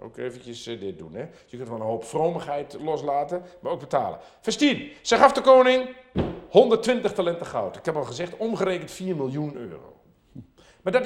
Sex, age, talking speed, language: male, 50-69, 185 wpm, Dutch